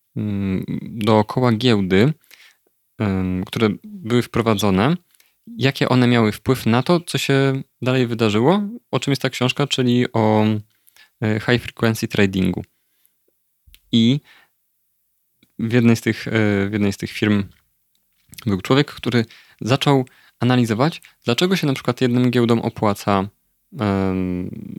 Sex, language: male, Polish